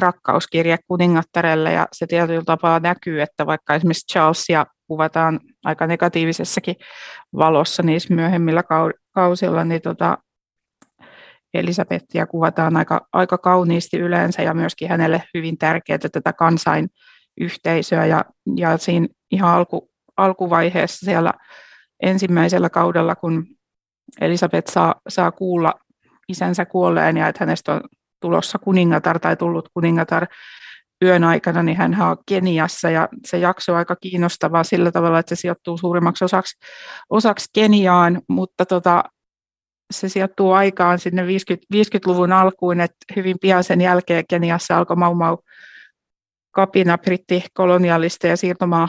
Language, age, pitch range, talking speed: Finnish, 30-49, 165-185 Hz, 125 wpm